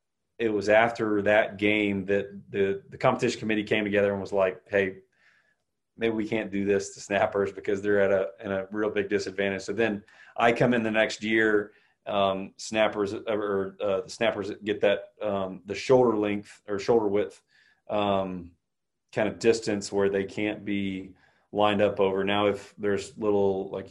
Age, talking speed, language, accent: 30-49, 180 wpm, English, American